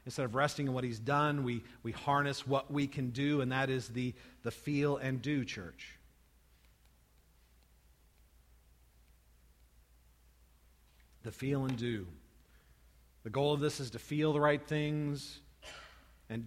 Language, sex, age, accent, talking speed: English, male, 40-59, American, 140 wpm